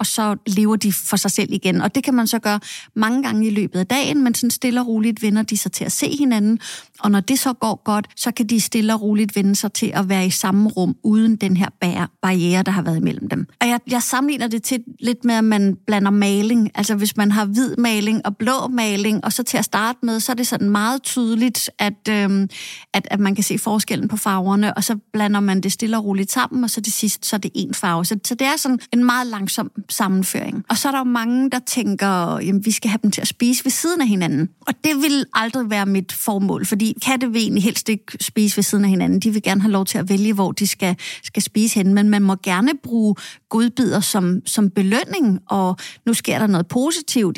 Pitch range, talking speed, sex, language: 200-235 Hz, 250 wpm, female, Danish